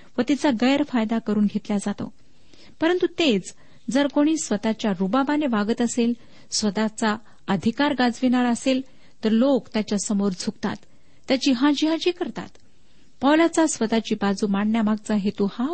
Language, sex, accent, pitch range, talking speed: Marathi, female, native, 205-270 Hz, 120 wpm